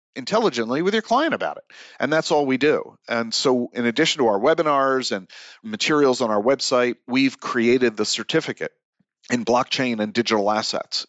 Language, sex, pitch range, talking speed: English, male, 105-125 Hz, 175 wpm